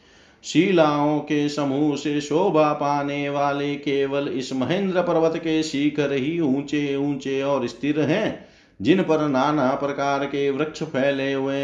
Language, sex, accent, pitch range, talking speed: Hindi, male, native, 135-155 Hz, 140 wpm